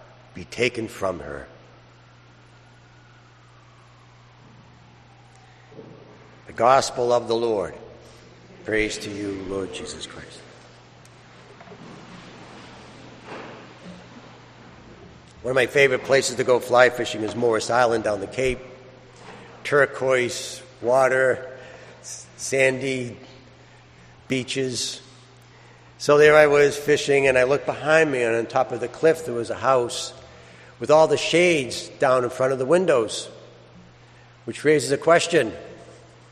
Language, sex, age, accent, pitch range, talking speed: English, male, 60-79, American, 100-140 Hz, 110 wpm